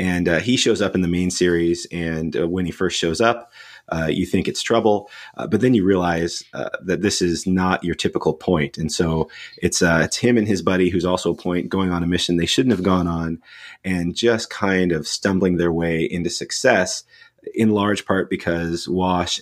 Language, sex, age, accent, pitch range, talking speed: English, male, 30-49, American, 85-95 Hz, 215 wpm